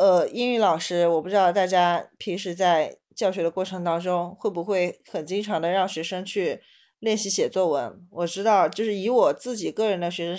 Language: Chinese